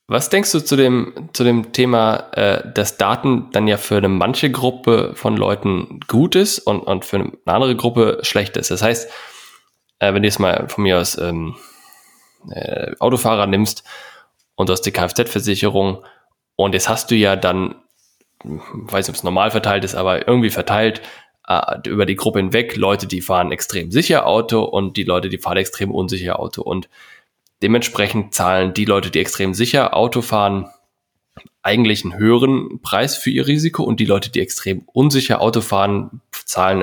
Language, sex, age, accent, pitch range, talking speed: German, male, 20-39, German, 95-120 Hz, 180 wpm